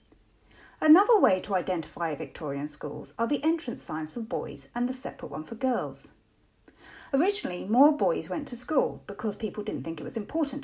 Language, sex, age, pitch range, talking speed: English, female, 50-69, 185-280 Hz, 175 wpm